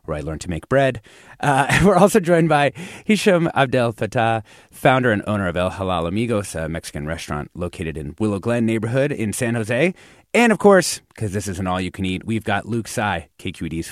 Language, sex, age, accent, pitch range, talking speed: English, male, 30-49, American, 90-135 Hz, 205 wpm